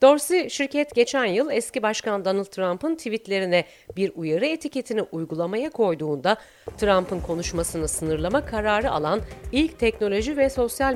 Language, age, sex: Turkish, 40-59, female